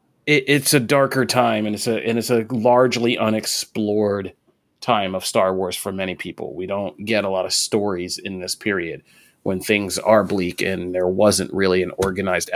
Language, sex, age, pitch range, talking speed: English, male, 30-49, 100-115 Hz, 190 wpm